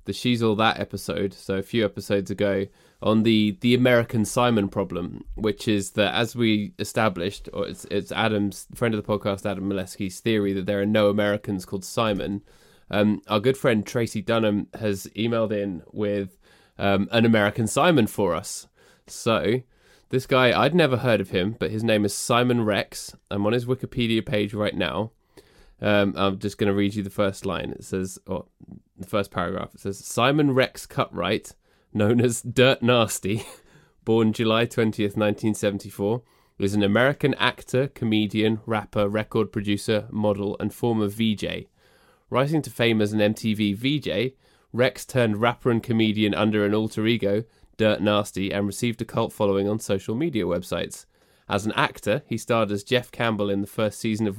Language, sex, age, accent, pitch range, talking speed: English, male, 20-39, British, 100-115 Hz, 175 wpm